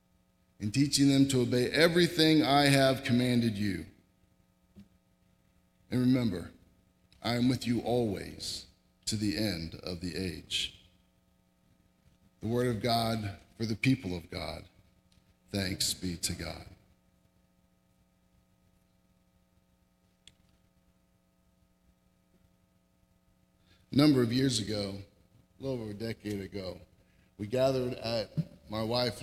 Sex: male